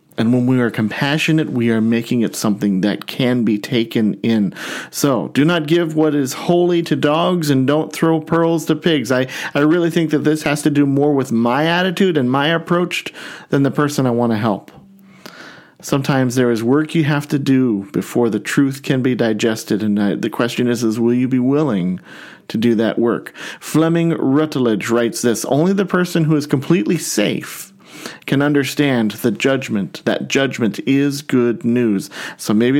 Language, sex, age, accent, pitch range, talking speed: English, male, 40-59, American, 120-155 Hz, 190 wpm